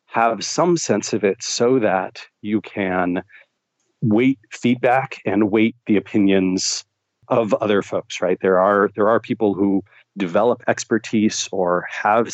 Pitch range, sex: 95-115 Hz, male